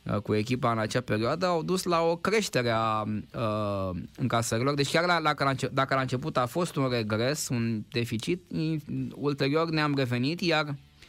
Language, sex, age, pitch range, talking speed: Romanian, male, 20-39, 120-150 Hz, 150 wpm